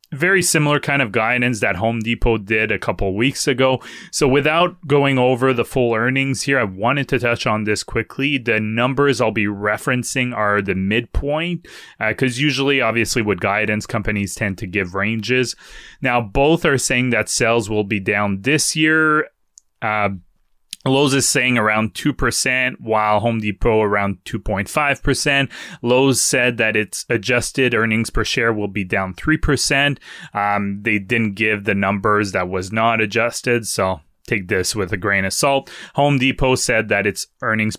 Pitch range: 105-135 Hz